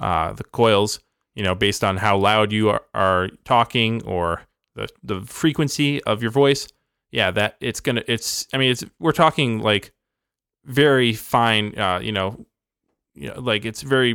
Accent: American